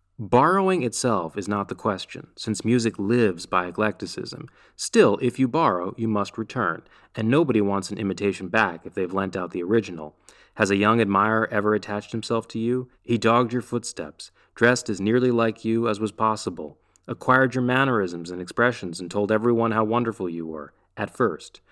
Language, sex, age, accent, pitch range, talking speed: English, male, 30-49, American, 105-120 Hz, 180 wpm